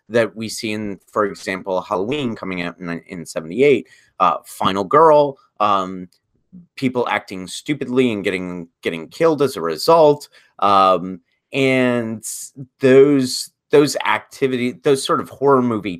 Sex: male